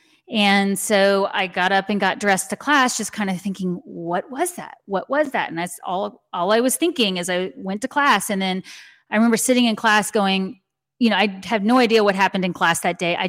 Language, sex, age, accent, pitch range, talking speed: English, female, 30-49, American, 185-225 Hz, 240 wpm